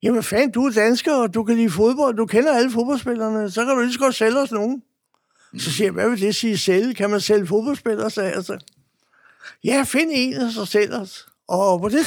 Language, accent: Danish, native